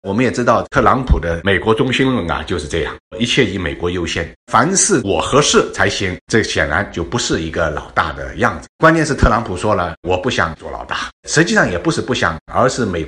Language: Chinese